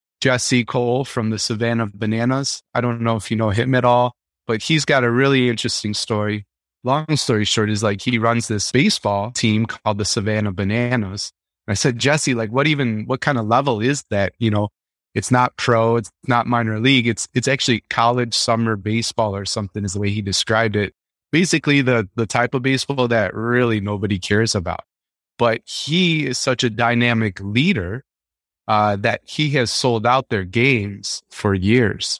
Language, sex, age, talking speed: English, male, 30-49, 185 wpm